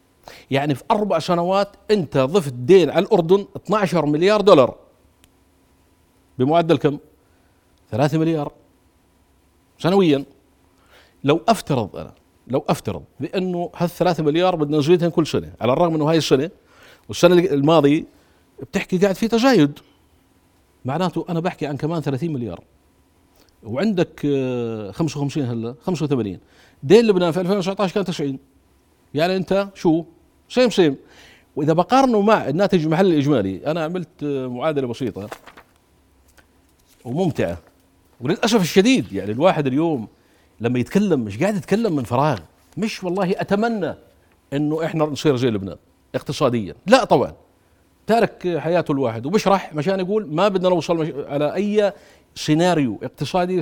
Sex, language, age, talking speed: male, Arabic, 50-69, 125 wpm